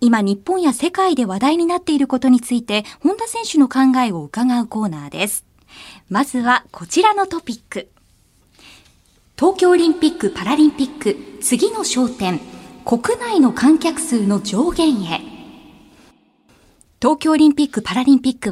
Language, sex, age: Japanese, female, 20-39